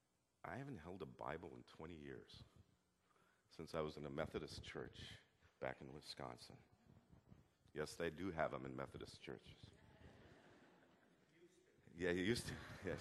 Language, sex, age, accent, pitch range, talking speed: English, male, 50-69, American, 75-105 Hz, 145 wpm